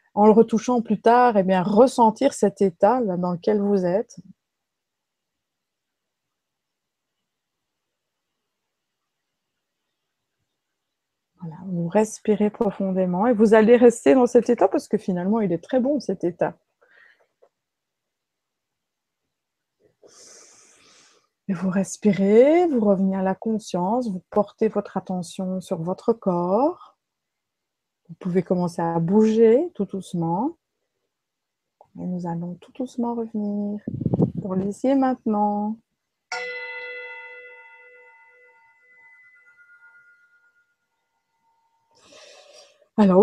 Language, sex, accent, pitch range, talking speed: French, female, French, 190-265 Hz, 95 wpm